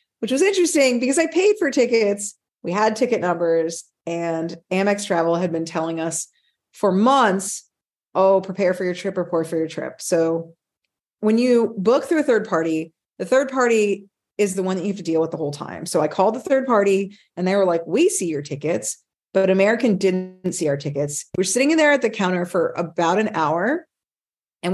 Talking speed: 205 wpm